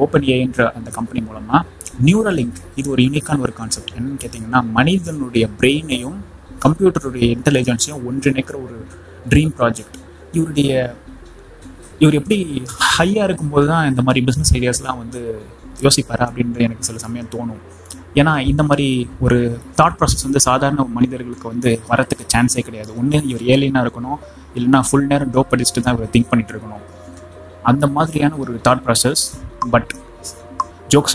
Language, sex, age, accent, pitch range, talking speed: Tamil, male, 20-39, native, 115-140 Hz, 140 wpm